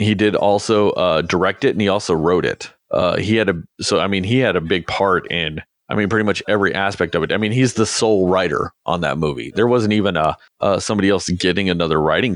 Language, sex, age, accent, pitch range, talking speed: English, male, 30-49, American, 95-120 Hz, 250 wpm